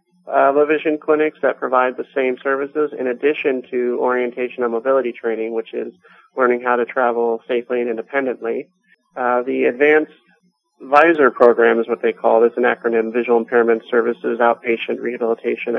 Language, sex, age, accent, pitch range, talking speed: English, male, 30-49, American, 120-140 Hz, 165 wpm